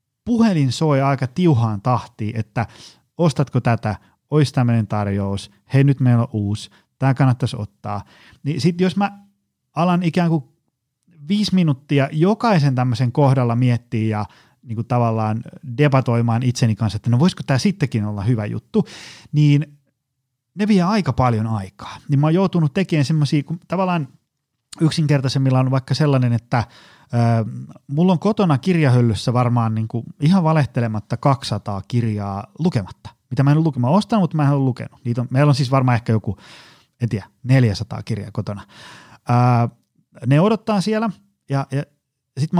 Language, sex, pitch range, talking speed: Finnish, male, 115-160 Hz, 155 wpm